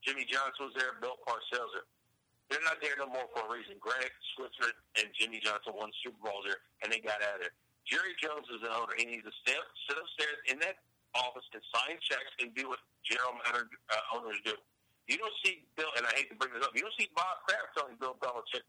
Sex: male